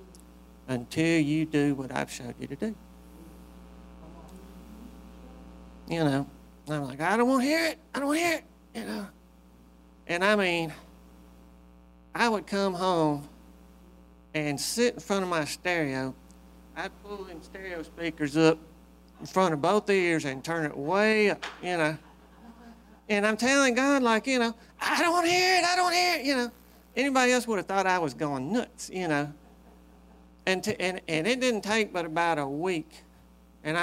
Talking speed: 185 wpm